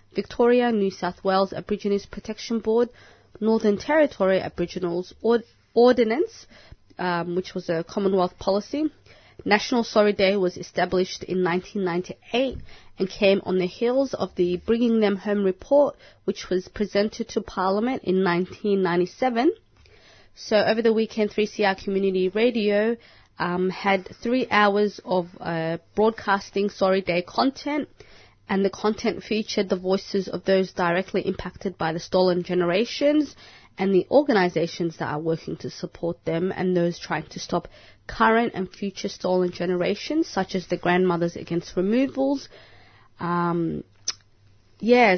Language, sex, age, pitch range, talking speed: English, female, 30-49, 180-225 Hz, 135 wpm